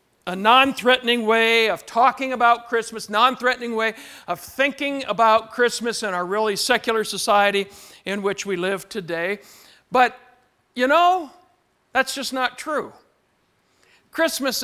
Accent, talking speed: American, 125 wpm